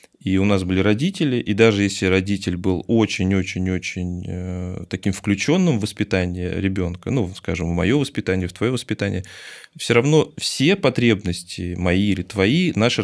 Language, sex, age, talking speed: Russian, male, 20-39, 145 wpm